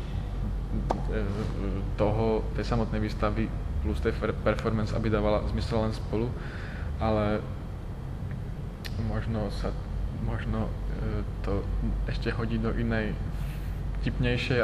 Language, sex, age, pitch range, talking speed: Czech, male, 20-39, 105-125 Hz, 85 wpm